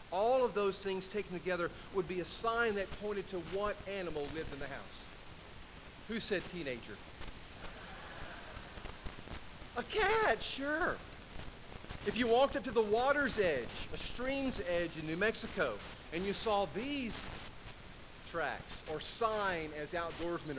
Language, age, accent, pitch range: English, 40-59, American, 130-205 Hz